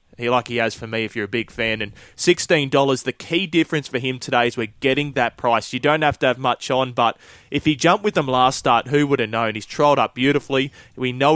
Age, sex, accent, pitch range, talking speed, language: 20-39, male, Australian, 120-140 Hz, 255 wpm, English